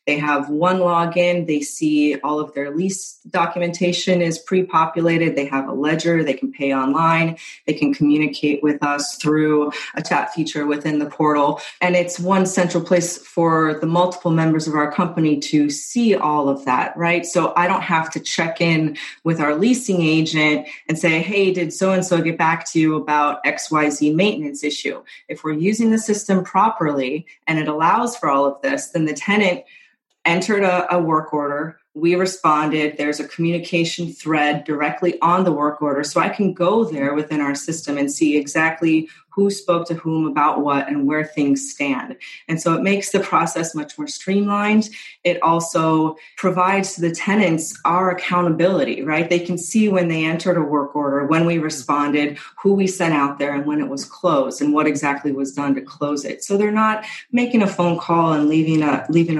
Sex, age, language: female, 30-49, English